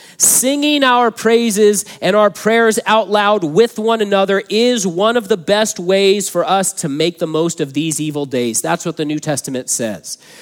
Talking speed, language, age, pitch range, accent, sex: 190 wpm, English, 40-59, 155-205 Hz, American, male